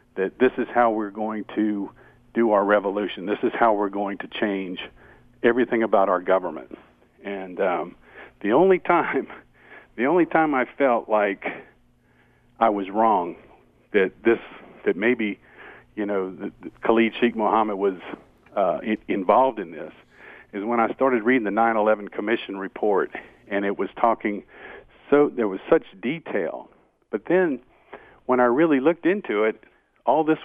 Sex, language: male, English